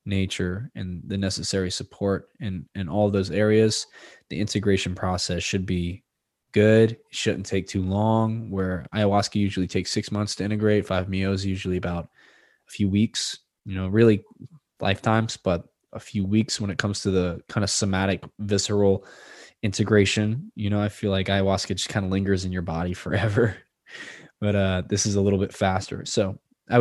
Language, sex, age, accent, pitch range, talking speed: English, male, 20-39, American, 95-110 Hz, 170 wpm